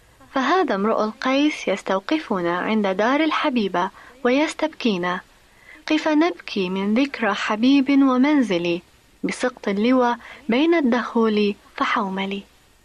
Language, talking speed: Arabic, 90 wpm